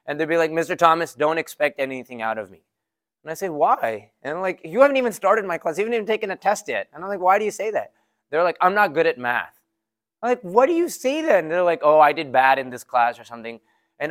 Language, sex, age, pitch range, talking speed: English, male, 20-39, 135-195 Hz, 275 wpm